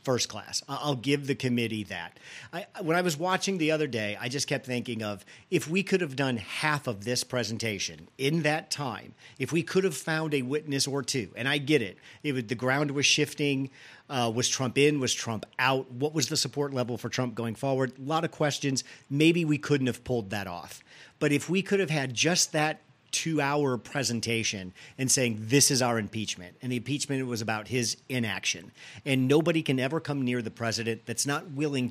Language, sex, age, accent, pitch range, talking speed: English, male, 40-59, American, 115-150 Hz, 215 wpm